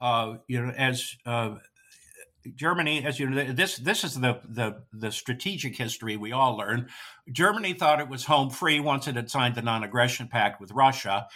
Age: 60-79